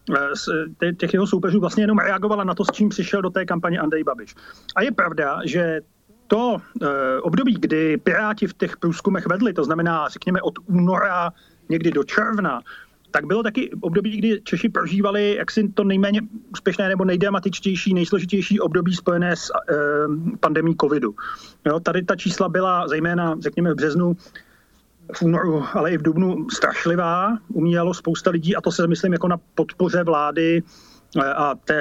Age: 40-59